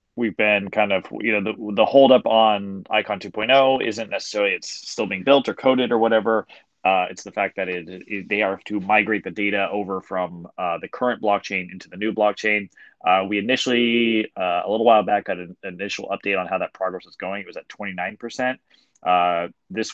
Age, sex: 20-39, male